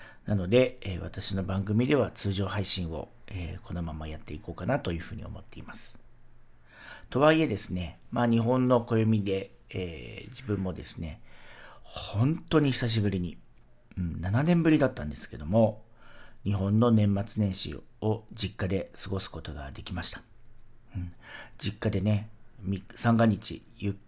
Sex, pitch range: male, 90-115 Hz